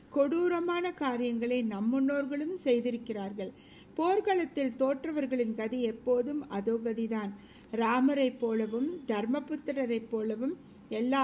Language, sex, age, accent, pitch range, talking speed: Tamil, female, 50-69, native, 230-285 Hz, 80 wpm